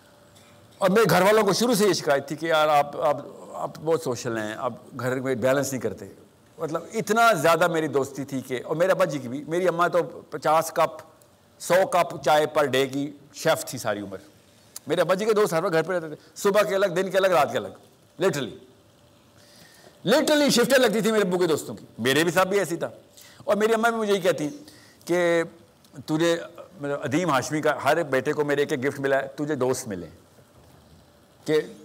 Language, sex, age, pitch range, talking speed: Urdu, male, 50-69, 140-185 Hz, 205 wpm